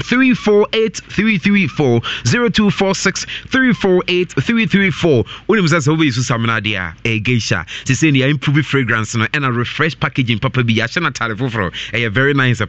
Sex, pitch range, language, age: male, 125-185 Hz, English, 30-49